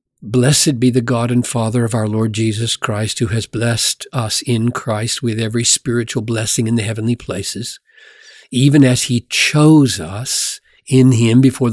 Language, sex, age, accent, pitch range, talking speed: English, male, 60-79, American, 115-140 Hz, 170 wpm